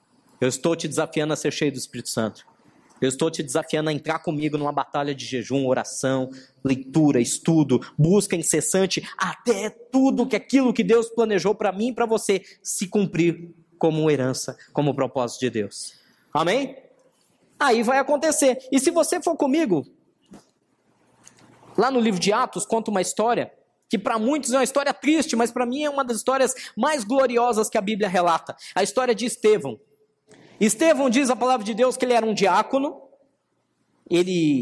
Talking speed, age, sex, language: 170 wpm, 20-39, male, Portuguese